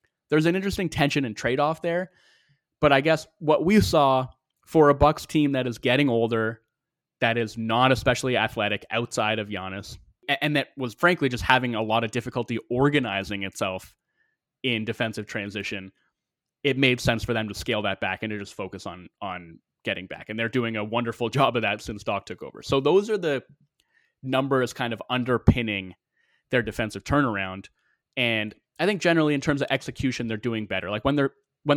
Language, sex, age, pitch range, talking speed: English, male, 20-39, 110-145 Hz, 185 wpm